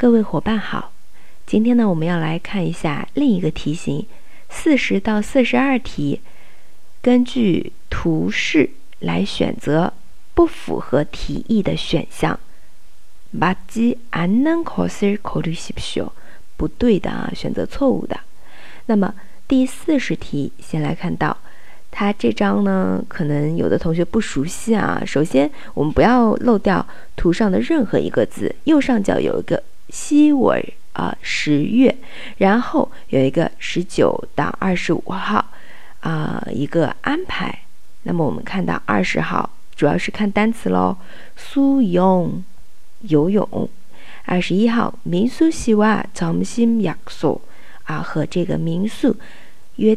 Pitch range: 175-250 Hz